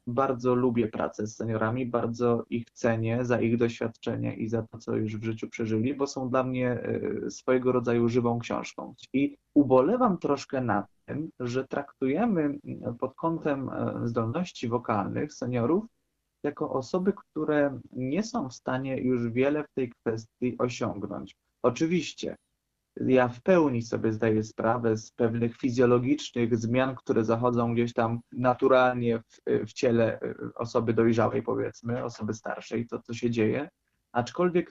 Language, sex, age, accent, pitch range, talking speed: Polish, male, 20-39, native, 115-140 Hz, 140 wpm